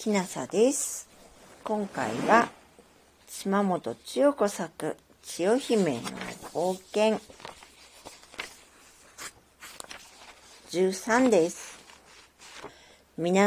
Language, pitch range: Japanese, 170-230 Hz